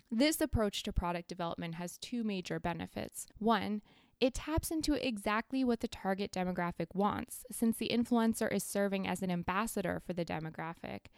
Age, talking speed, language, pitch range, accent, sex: 20-39, 160 wpm, English, 190-255 Hz, American, female